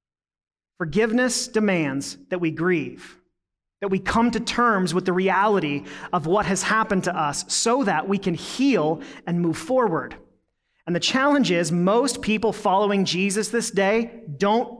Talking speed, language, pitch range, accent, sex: 155 wpm, English, 180-225 Hz, American, male